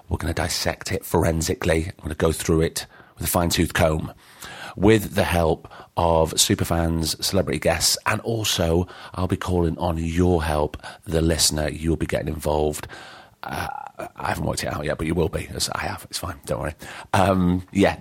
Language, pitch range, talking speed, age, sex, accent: English, 80-100 Hz, 195 wpm, 30-49, male, British